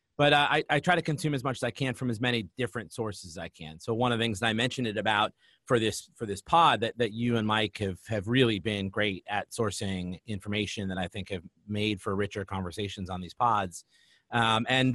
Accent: American